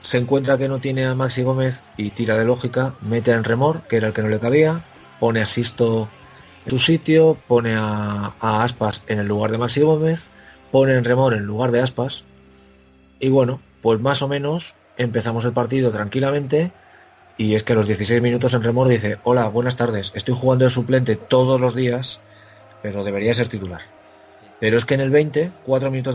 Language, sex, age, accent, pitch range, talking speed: Spanish, male, 30-49, Spanish, 110-130 Hz, 200 wpm